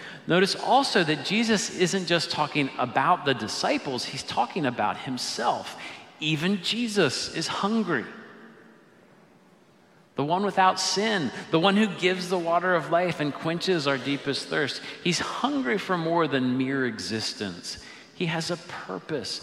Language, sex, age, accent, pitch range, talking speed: English, male, 40-59, American, 115-175 Hz, 140 wpm